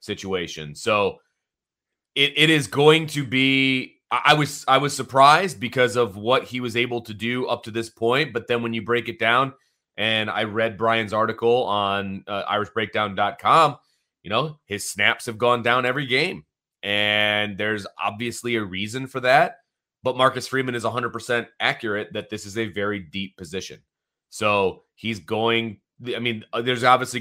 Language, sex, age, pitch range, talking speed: English, male, 30-49, 105-125 Hz, 170 wpm